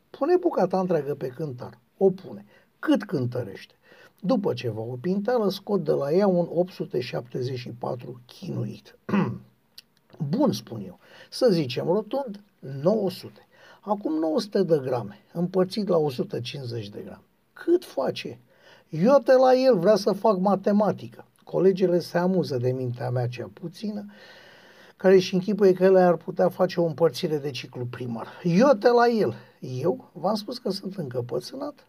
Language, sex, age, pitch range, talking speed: Romanian, male, 60-79, 155-215 Hz, 145 wpm